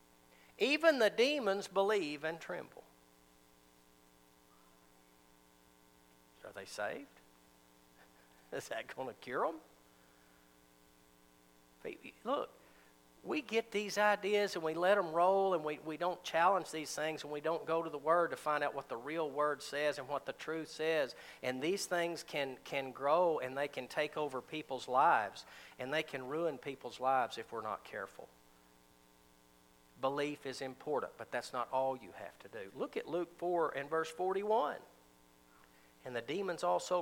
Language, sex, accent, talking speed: English, male, American, 160 wpm